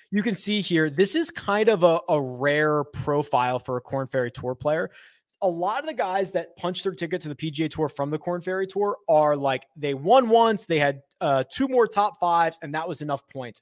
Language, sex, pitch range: English, male, 145-185 Hz